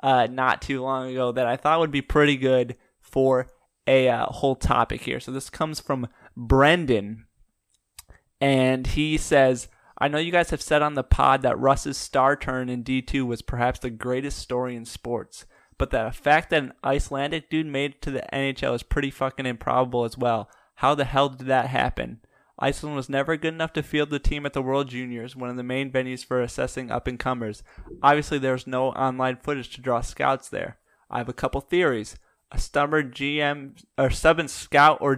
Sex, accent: male, American